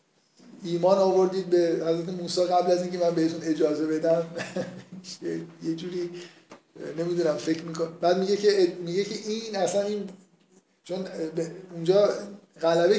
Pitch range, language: 155-190 Hz, Persian